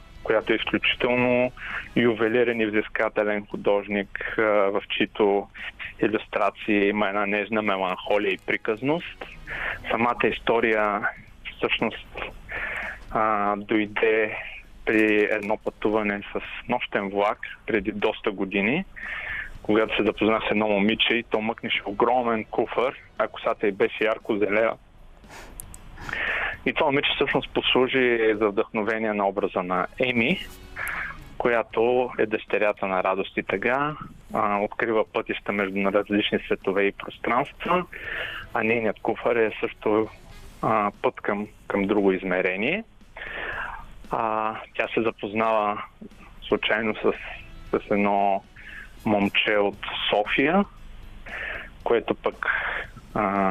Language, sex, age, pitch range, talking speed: Bulgarian, male, 20-39, 100-110 Hz, 110 wpm